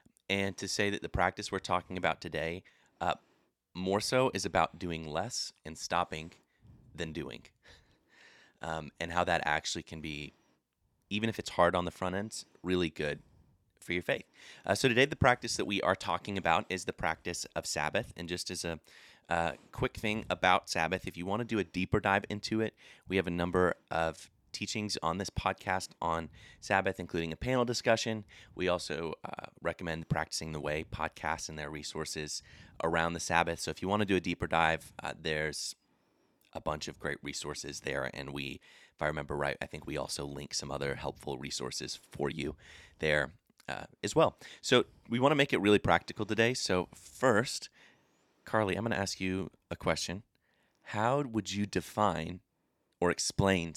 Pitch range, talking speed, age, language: 80-100 Hz, 185 wpm, 30-49, English